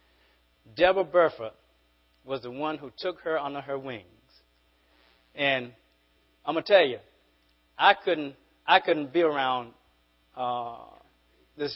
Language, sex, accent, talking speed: English, male, American, 130 wpm